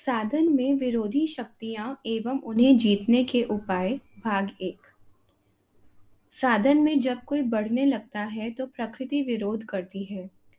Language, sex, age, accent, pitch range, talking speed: Hindi, female, 10-29, native, 195-255 Hz, 130 wpm